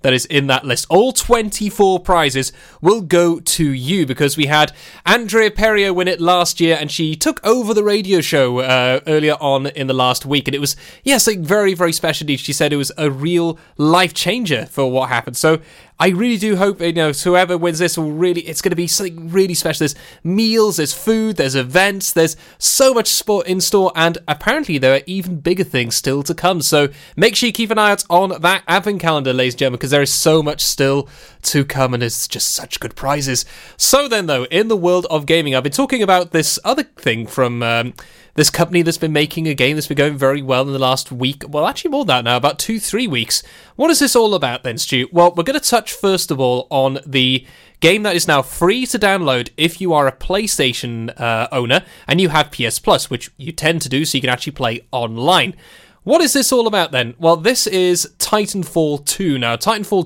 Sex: male